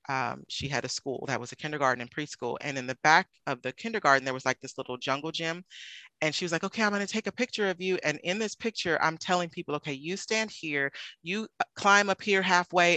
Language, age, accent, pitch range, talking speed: English, 30-49, American, 140-180 Hz, 250 wpm